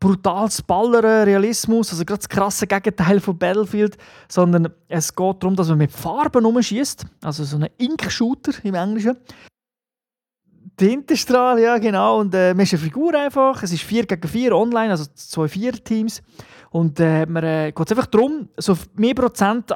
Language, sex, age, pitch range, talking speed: German, male, 30-49, 170-225 Hz, 165 wpm